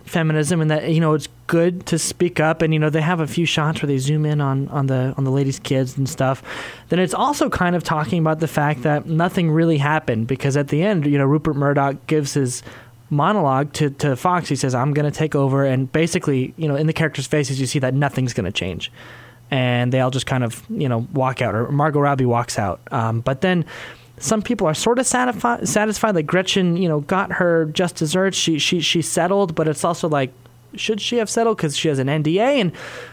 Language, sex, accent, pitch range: English, male, American, 140-185 Hz